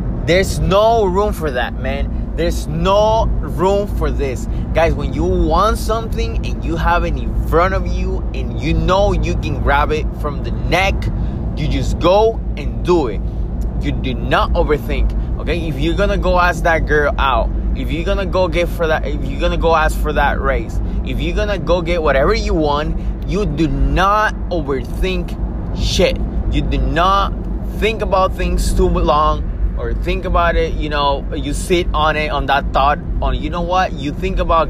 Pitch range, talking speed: 145-185 Hz, 190 wpm